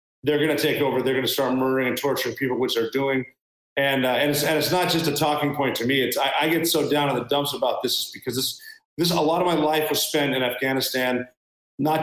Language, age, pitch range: English, 40-59, 130-155 Hz